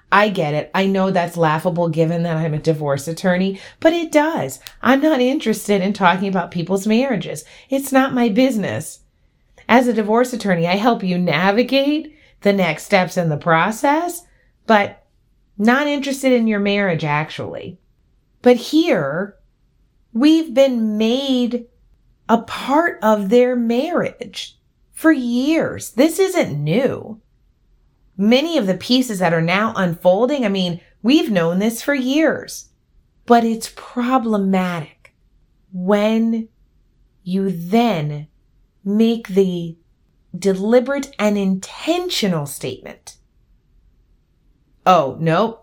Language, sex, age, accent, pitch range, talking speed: English, female, 30-49, American, 175-245 Hz, 120 wpm